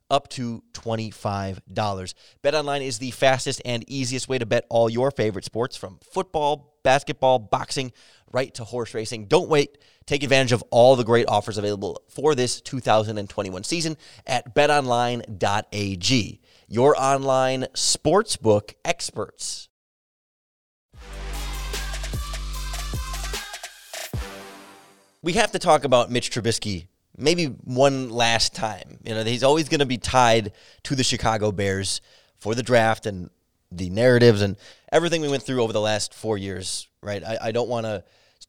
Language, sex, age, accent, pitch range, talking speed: English, male, 30-49, American, 105-135 Hz, 140 wpm